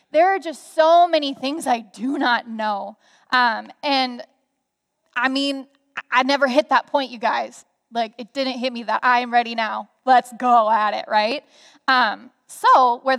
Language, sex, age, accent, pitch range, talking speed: English, female, 10-29, American, 245-290 Hz, 180 wpm